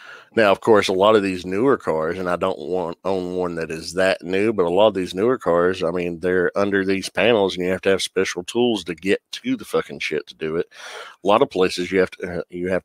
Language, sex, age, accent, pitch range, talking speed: English, male, 50-69, American, 90-110 Hz, 265 wpm